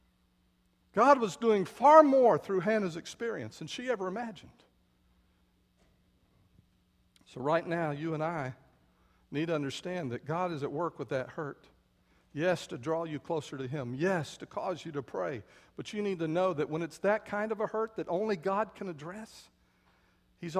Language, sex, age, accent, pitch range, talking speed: English, male, 50-69, American, 120-205 Hz, 180 wpm